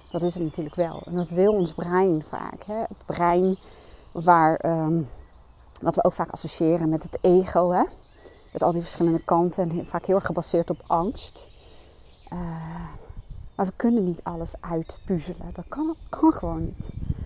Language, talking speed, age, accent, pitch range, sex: Dutch, 170 wpm, 30-49, Dutch, 165-190 Hz, female